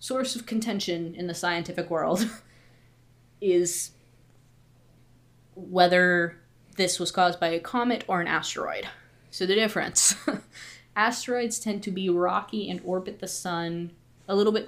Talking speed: 135 wpm